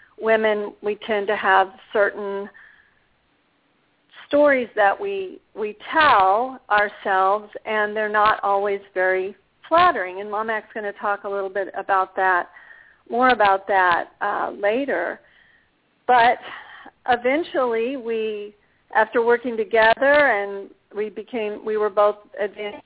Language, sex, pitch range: English, female, 200-235 Hz